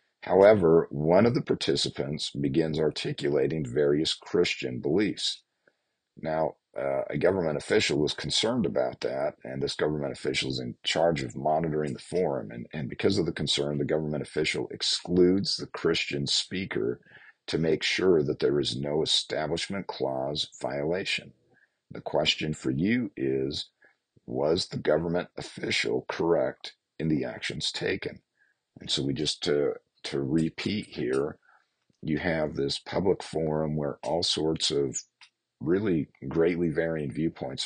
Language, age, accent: English, 50-69, American